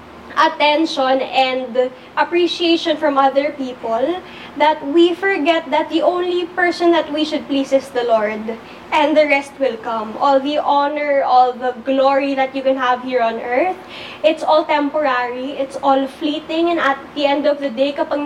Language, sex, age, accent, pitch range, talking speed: Filipino, female, 20-39, native, 265-335 Hz, 170 wpm